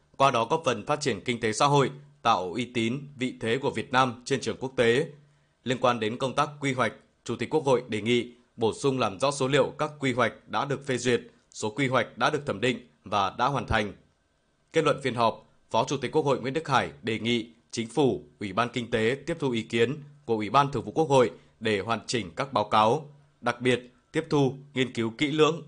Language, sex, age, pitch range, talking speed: Vietnamese, male, 20-39, 115-140 Hz, 245 wpm